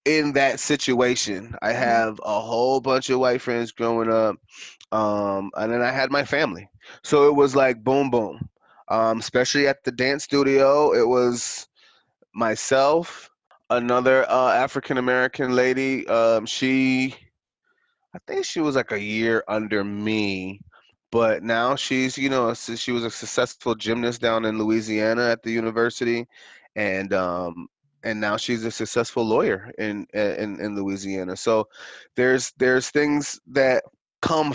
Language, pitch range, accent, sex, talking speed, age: English, 110-130 Hz, American, male, 145 wpm, 20-39